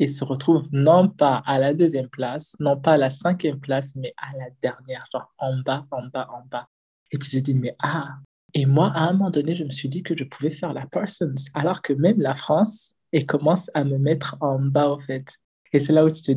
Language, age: English, 20-39